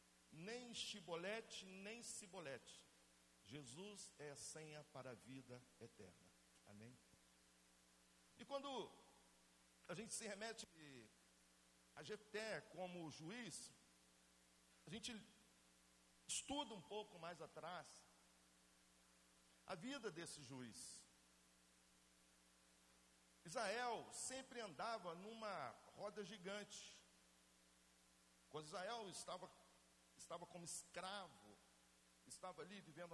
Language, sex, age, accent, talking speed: Portuguese, male, 60-79, Brazilian, 90 wpm